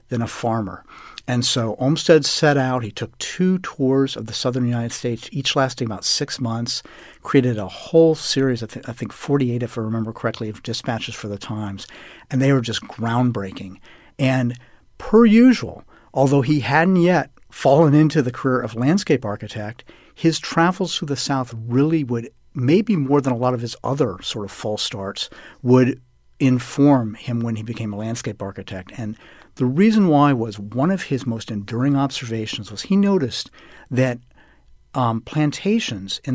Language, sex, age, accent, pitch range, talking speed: English, male, 50-69, American, 115-150 Hz, 175 wpm